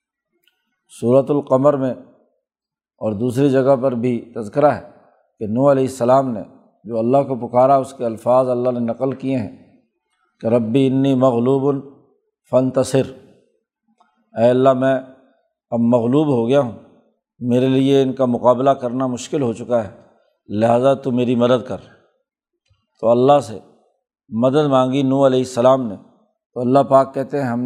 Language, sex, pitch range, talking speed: Urdu, male, 120-140 Hz, 150 wpm